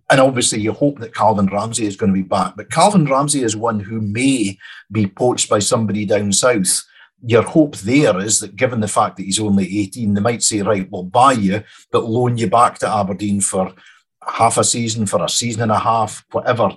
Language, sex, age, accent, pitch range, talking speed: English, male, 50-69, British, 100-115 Hz, 220 wpm